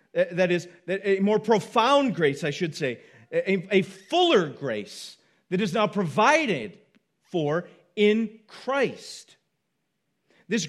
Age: 40-59